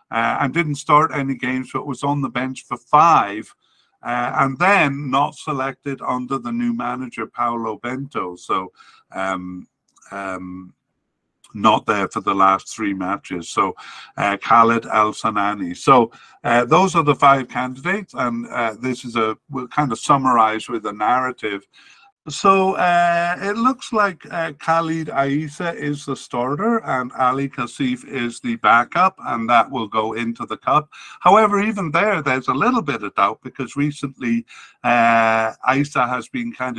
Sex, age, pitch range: male, 50-69, 120-150 Hz